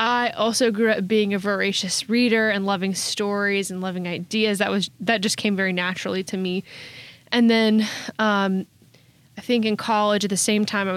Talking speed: 190 wpm